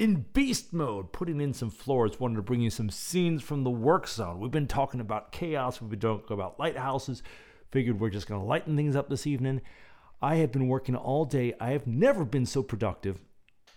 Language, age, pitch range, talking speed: English, 40-59, 100-135 Hz, 215 wpm